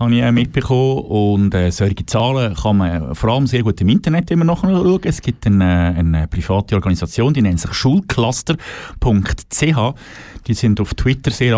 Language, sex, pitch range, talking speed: German, male, 95-135 Hz, 160 wpm